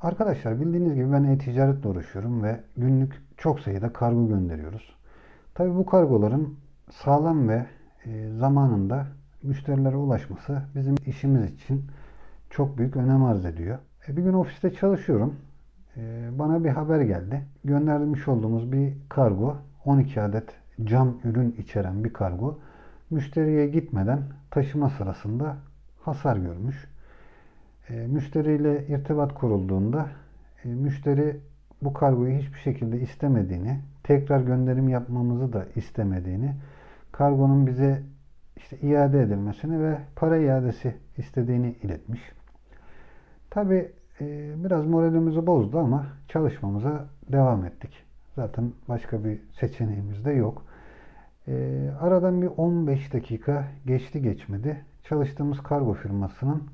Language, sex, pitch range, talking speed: Turkish, male, 115-145 Hz, 110 wpm